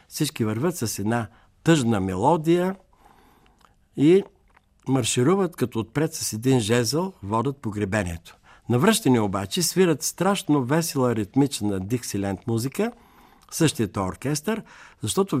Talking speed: 100 wpm